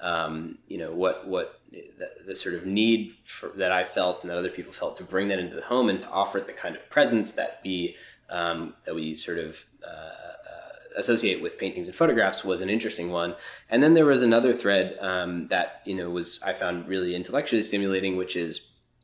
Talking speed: 210 wpm